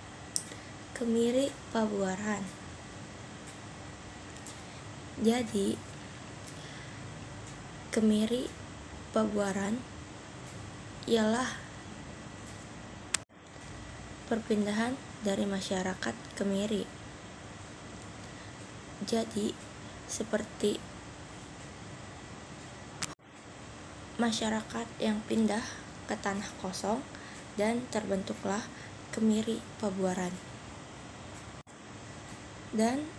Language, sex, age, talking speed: Indonesian, female, 20-39, 40 wpm